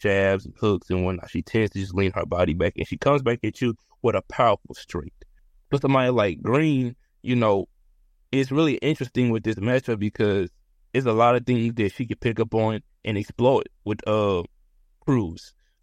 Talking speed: 195 wpm